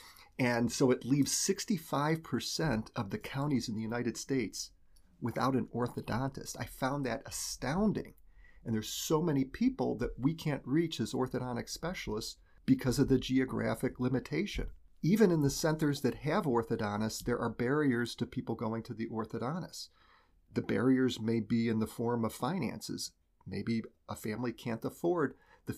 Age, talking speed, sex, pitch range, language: 40-59, 155 wpm, male, 115-140 Hz, English